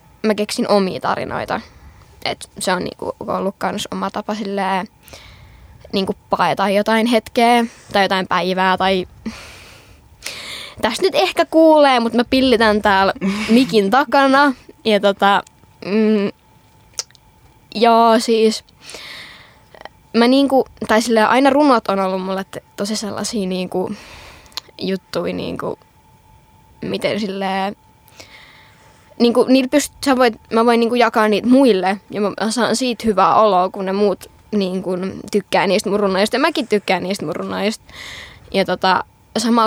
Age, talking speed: 10-29, 125 wpm